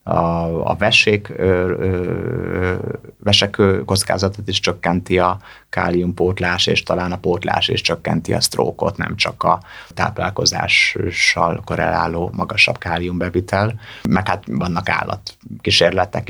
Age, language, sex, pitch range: 30-49, Hungarian, male, 85-100 Hz